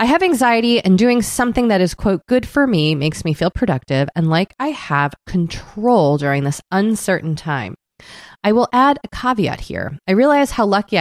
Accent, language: American, English